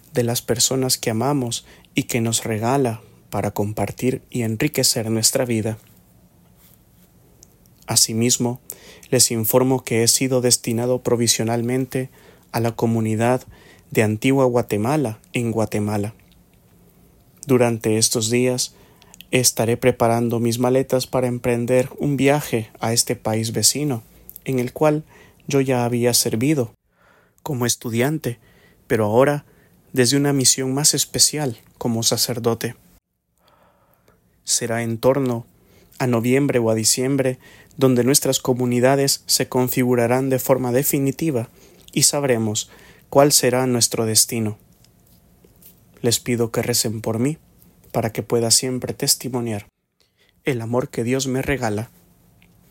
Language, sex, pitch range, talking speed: English, male, 115-130 Hz, 115 wpm